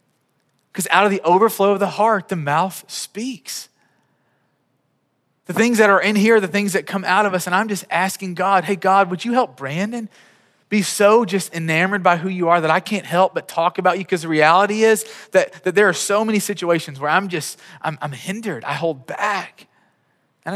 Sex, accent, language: male, American, English